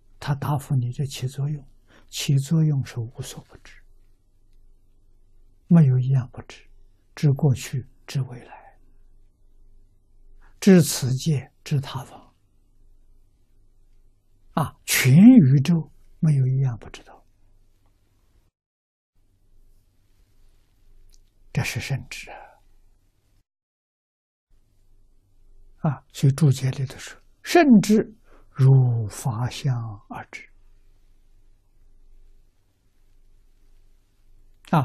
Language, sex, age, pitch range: Chinese, male, 60-79, 100-135 Hz